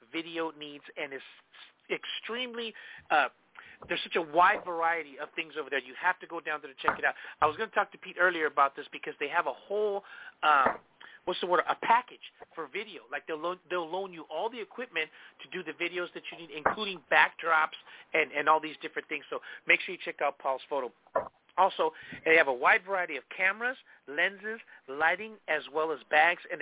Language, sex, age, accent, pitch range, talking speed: English, male, 40-59, American, 150-210 Hz, 215 wpm